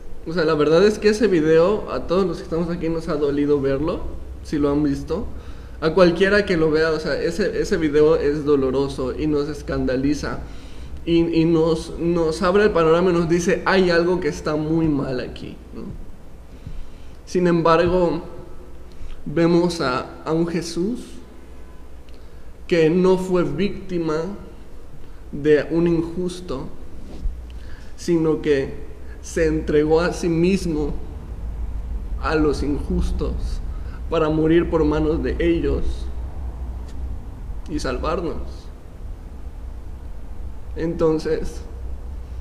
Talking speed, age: 125 wpm, 20-39